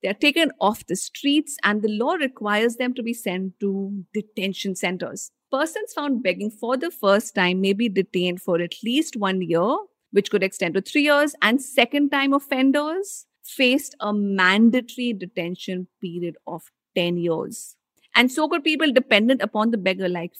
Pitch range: 200-285 Hz